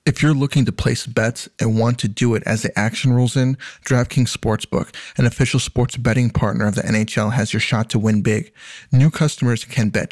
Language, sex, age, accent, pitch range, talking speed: English, male, 30-49, American, 110-125 Hz, 215 wpm